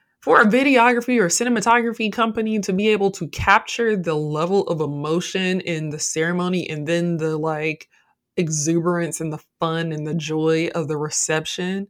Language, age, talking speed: English, 20-39, 160 wpm